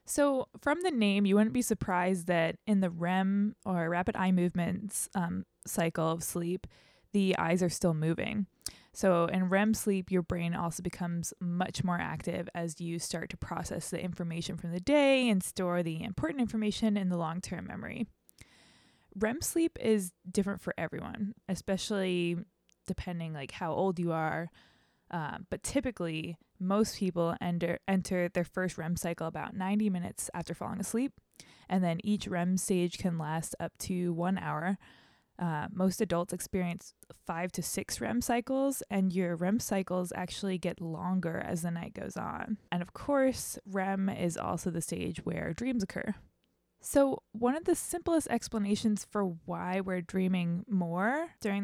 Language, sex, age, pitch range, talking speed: English, female, 20-39, 175-215 Hz, 165 wpm